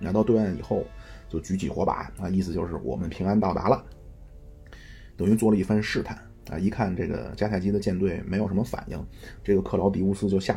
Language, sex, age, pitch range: Chinese, male, 30-49, 95-115 Hz